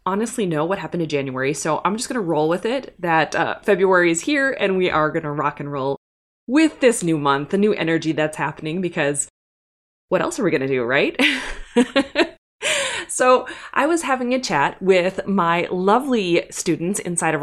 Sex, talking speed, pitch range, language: female, 195 wpm, 155-215 Hz, English